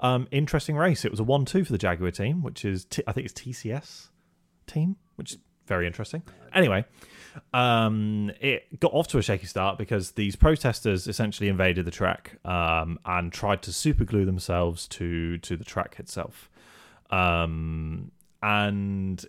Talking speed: 165 wpm